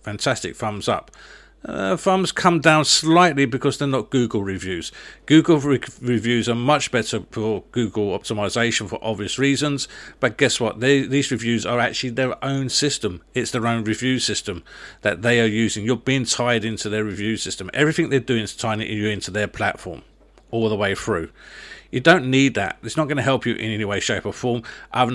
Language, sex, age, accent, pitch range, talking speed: English, male, 50-69, British, 105-130 Hz, 190 wpm